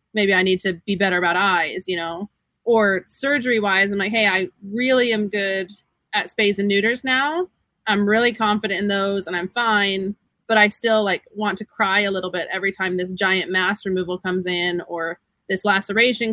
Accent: American